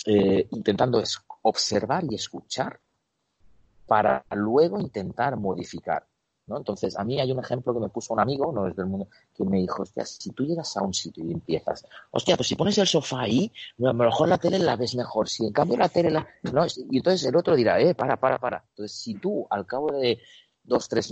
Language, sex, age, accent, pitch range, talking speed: Spanish, male, 40-59, Spanish, 100-145 Hz, 220 wpm